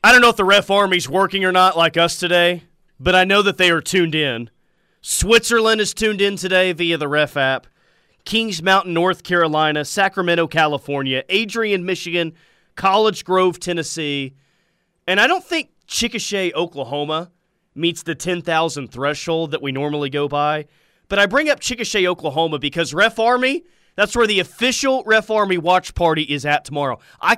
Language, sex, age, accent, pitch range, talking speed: English, male, 30-49, American, 150-200 Hz, 170 wpm